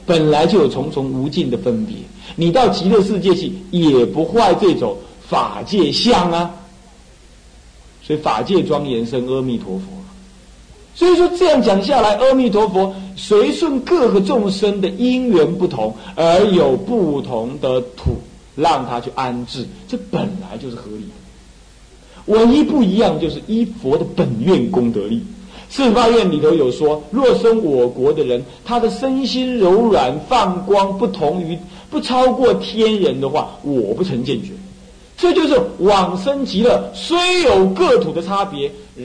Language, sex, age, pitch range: Chinese, male, 50-69, 140-230 Hz